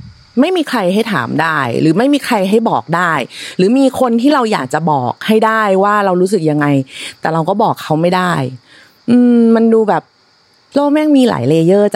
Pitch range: 160-225 Hz